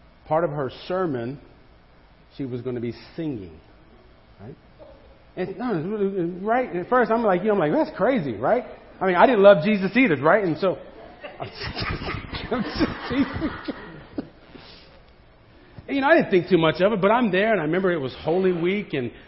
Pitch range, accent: 115-175 Hz, American